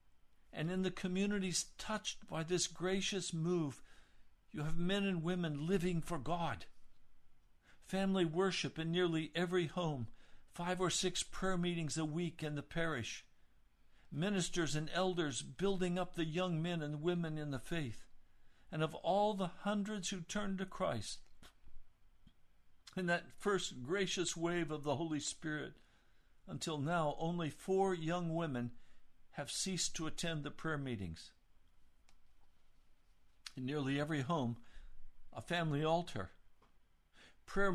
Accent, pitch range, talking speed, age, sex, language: American, 130-180 Hz, 135 wpm, 60-79, male, English